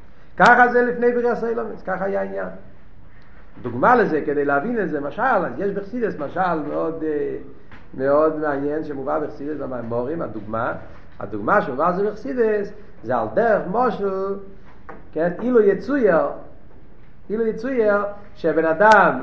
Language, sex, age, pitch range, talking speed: Hebrew, male, 50-69, 155-225 Hz, 130 wpm